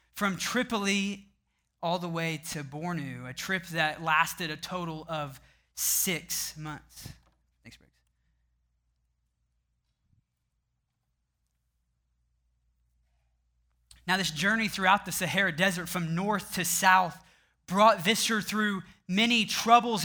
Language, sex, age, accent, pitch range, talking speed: English, male, 20-39, American, 145-195 Hz, 100 wpm